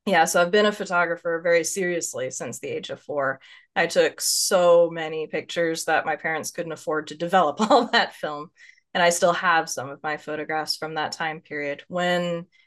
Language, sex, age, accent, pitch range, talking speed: English, female, 20-39, American, 155-190 Hz, 195 wpm